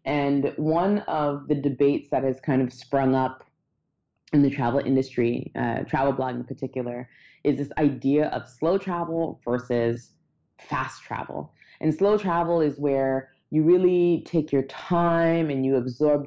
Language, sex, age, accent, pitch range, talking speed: English, female, 20-39, American, 130-155 Hz, 155 wpm